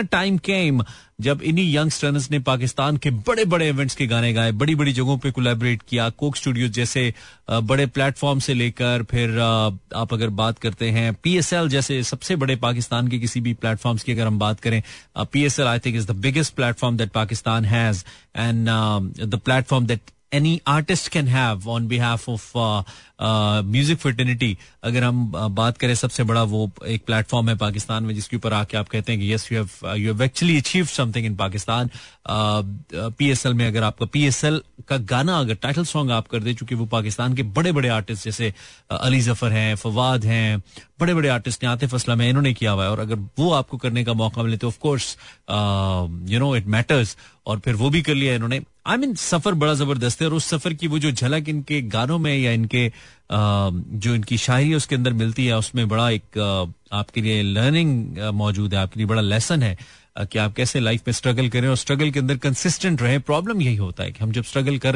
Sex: male